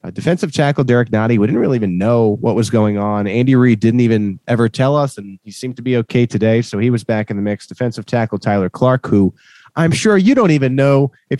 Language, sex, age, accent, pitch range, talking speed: English, male, 30-49, American, 105-140 Hz, 245 wpm